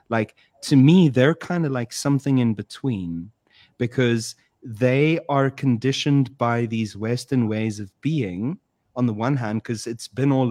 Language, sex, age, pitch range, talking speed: English, male, 30-49, 105-130 Hz, 160 wpm